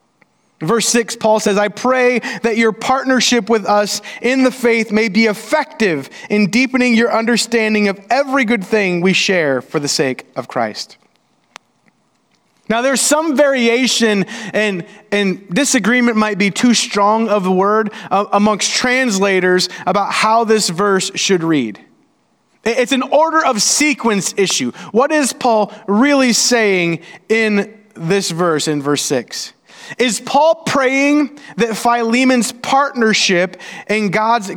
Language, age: English, 30-49